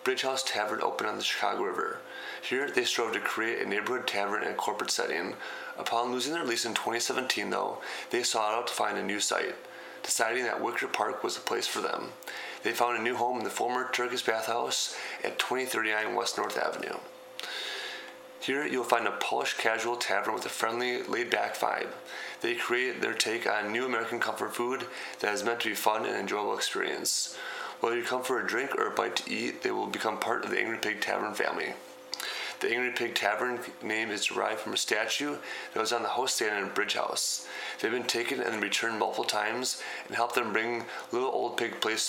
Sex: male